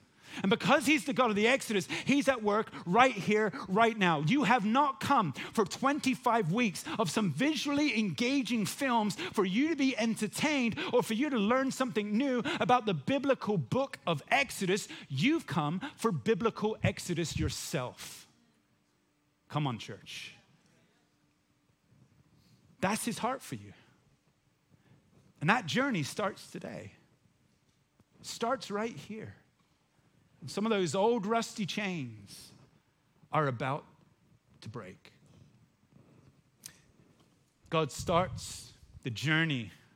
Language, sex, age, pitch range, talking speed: English, male, 30-49, 150-230 Hz, 120 wpm